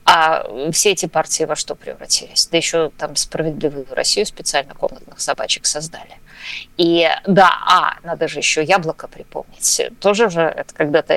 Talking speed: 150 wpm